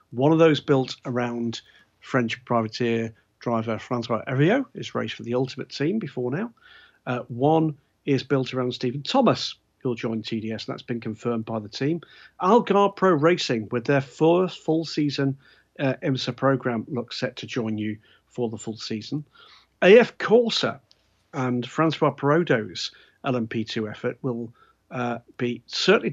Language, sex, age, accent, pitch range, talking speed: English, male, 50-69, British, 115-145 Hz, 150 wpm